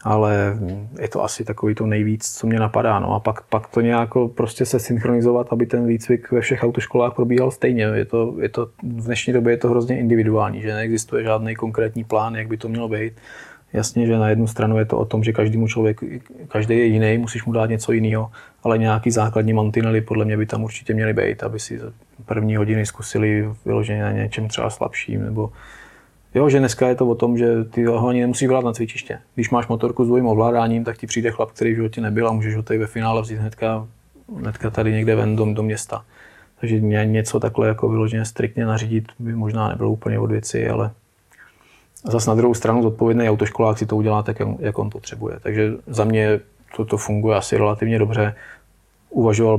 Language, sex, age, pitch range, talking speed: Czech, male, 20-39, 110-115 Hz, 205 wpm